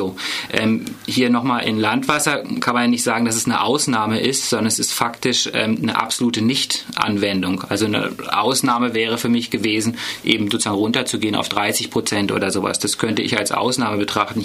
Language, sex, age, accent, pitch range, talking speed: German, male, 30-49, German, 110-125 Hz, 185 wpm